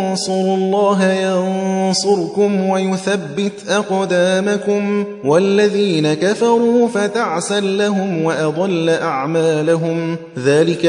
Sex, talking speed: male, 65 wpm